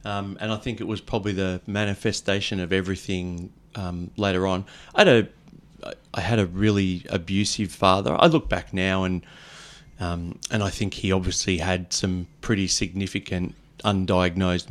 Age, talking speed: 30-49, 160 wpm